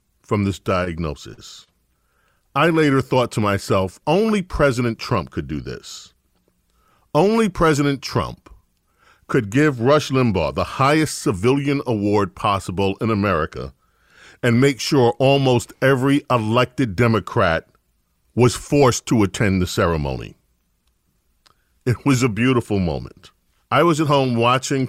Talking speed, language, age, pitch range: 125 wpm, English, 40-59, 95-130 Hz